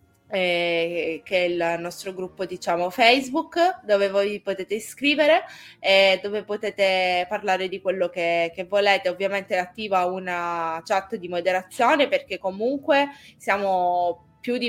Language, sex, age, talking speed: Italian, female, 20-39, 130 wpm